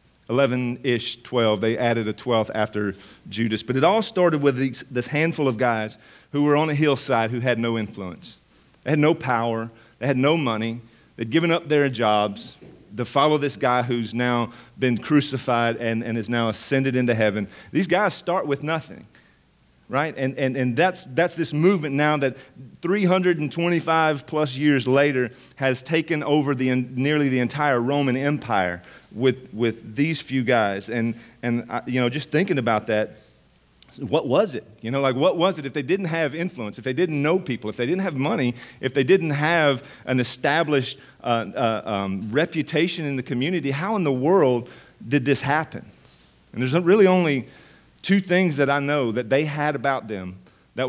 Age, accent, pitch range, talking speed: 40-59, American, 120-150 Hz, 185 wpm